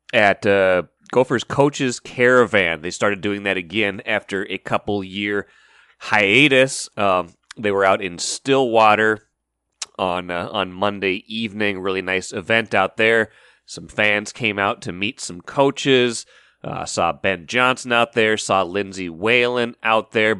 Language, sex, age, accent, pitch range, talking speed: English, male, 30-49, American, 95-115 Hz, 145 wpm